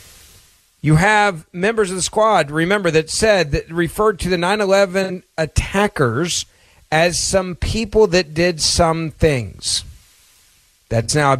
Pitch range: 120-190 Hz